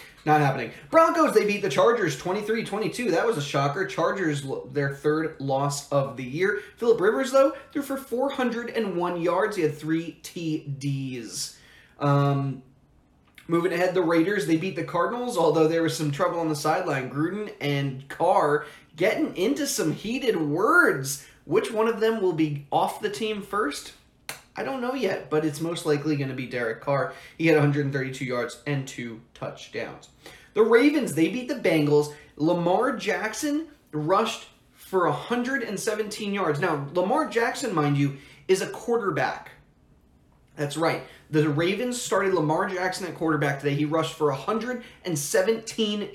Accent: American